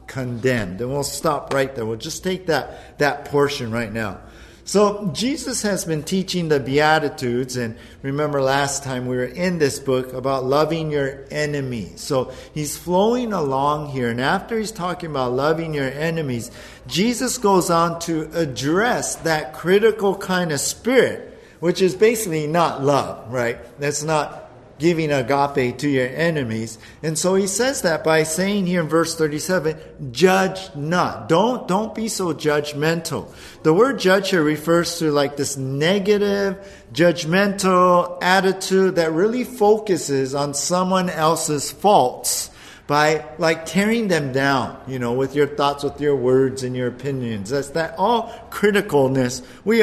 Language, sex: English, male